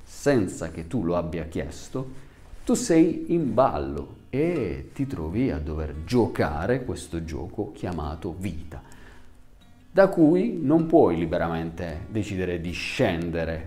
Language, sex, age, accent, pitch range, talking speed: Italian, male, 40-59, native, 85-115 Hz, 125 wpm